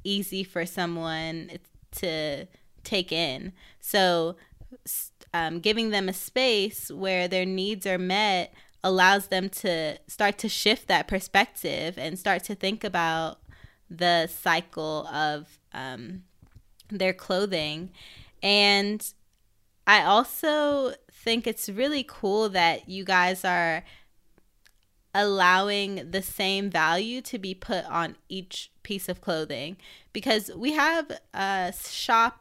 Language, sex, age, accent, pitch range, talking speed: English, female, 20-39, American, 175-215 Hz, 120 wpm